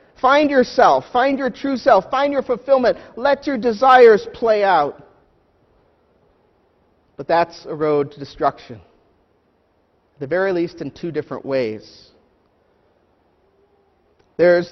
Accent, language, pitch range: American, English, 145-200 Hz